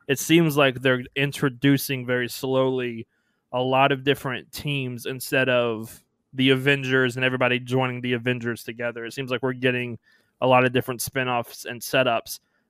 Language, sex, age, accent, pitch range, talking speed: English, male, 20-39, American, 125-140 Hz, 160 wpm